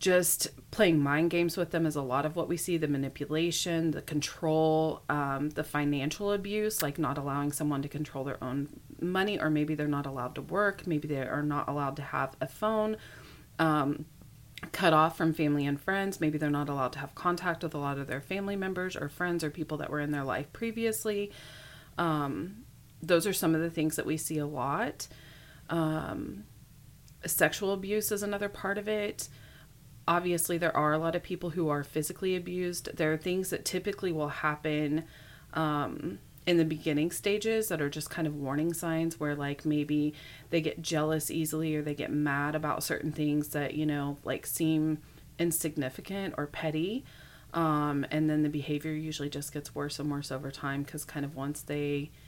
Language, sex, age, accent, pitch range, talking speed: English, female, 30-49, American, 145-170 Hz, 190 wpm